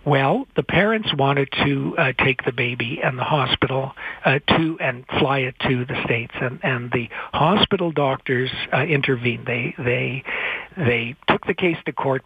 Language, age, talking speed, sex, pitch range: English, 60-79, 170 wpm, male, 130-155 Hz